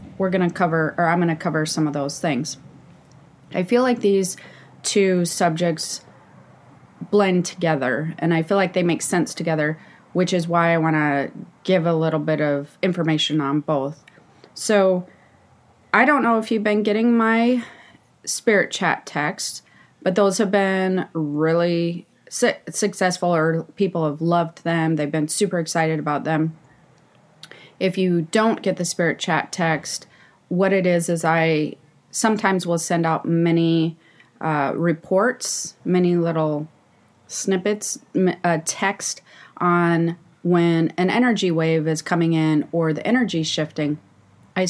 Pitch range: 160-195 Hz